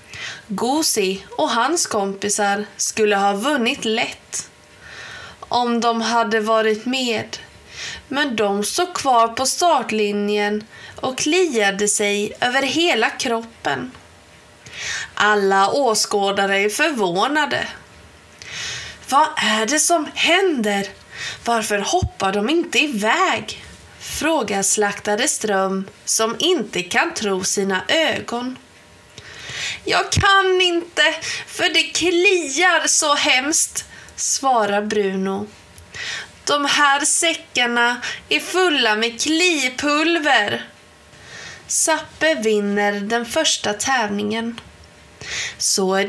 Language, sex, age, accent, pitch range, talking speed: Swedish, female, 20-39, native, 205-300 Hz, 95 wpm